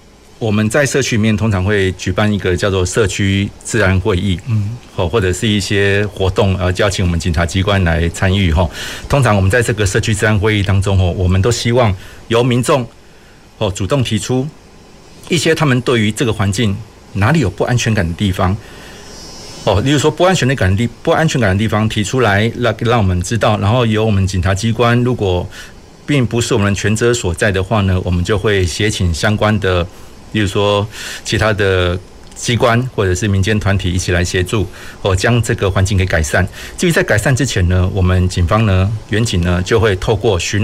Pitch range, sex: 95-115 Hz, male